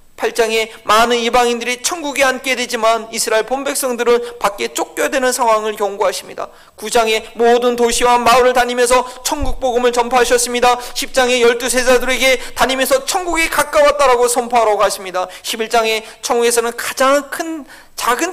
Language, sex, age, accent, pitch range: Korean, male, 40-59, native, 200-255 Hz